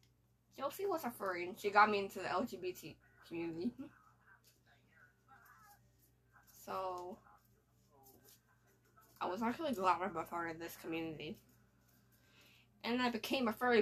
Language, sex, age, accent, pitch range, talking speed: English, female, 10-29, American, 180-245 Hz, 125 wpm